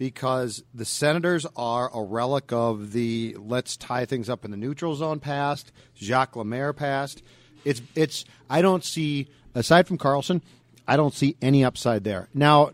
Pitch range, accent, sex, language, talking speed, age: 120-145 Hz, American, male, English, 165 wpm, 40-59